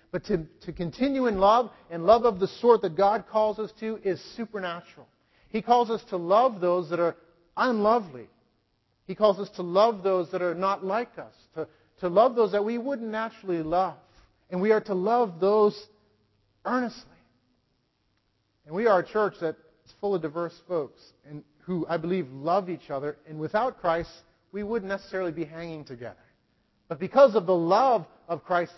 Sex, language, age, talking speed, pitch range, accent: male, English, 40-59, 185 wpm, 150-200 Hz, American